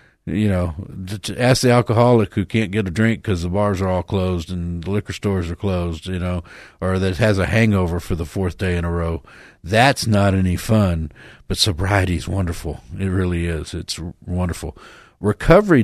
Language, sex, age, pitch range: English, male, 50-69, 90-110 Hz